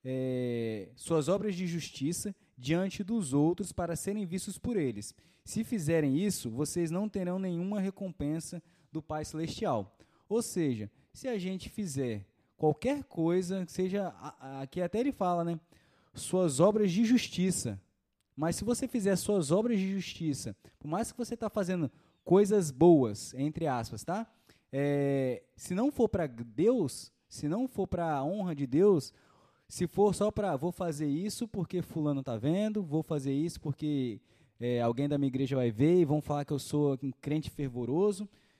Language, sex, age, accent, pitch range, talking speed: Portuguese, male, 20-39, Brazilian, 140-195 Hz, 170 wpm